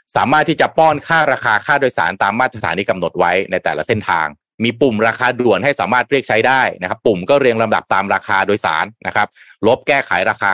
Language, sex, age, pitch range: Thai, male, 30-49, 110-135 Hz